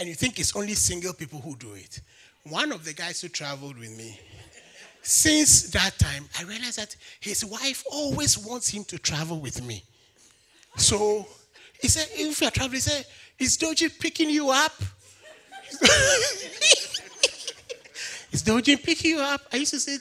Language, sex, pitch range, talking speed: English, male, 205-340 Hz, 165 wpm